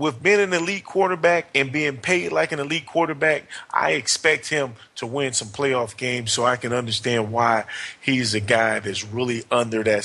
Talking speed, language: 190 wpm, English